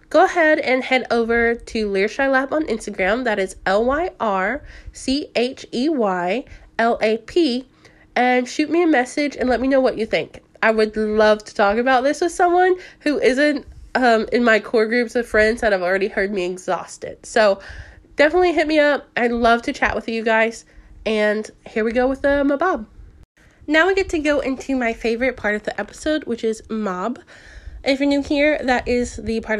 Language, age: English, 10-29